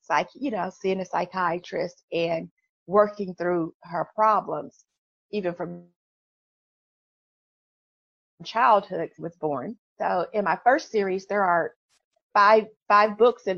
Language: English